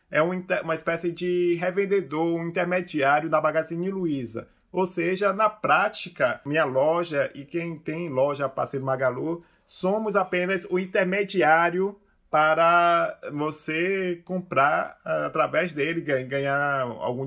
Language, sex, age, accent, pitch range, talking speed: Portuguese, male, 20-39, Brazilian, 145-180 Hz, 115 wpm